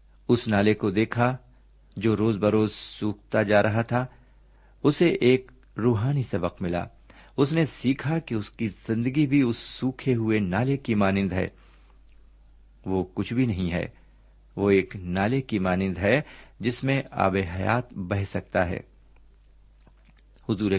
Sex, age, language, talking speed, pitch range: male, 50-69, Urdu, 145 wpm, 95-125 Hz